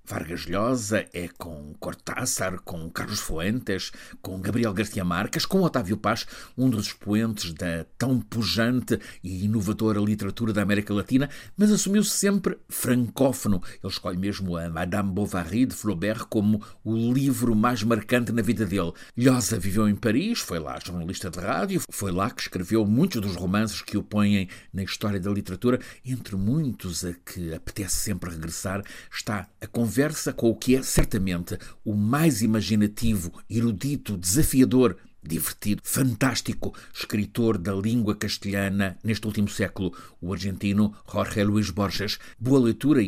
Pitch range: 95-120 Hz